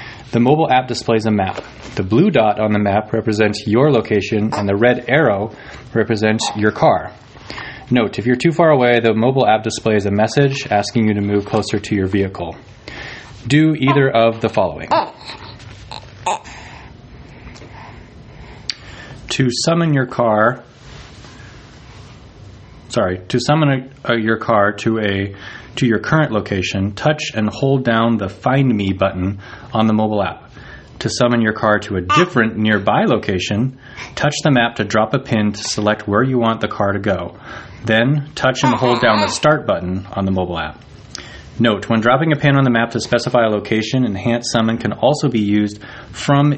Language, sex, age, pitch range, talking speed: English, male, 20-39, 105-125 Hz, 170 wpm